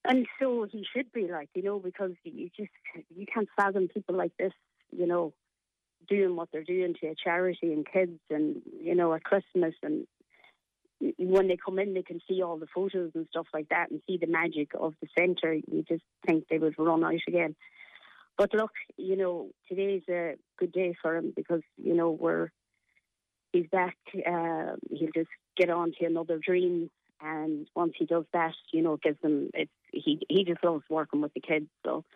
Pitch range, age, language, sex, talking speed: 160-180 Hz, 30-49, English, female, 200 wpm